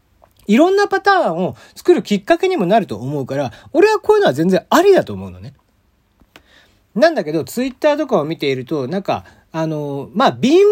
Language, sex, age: Japanese, male, 40-59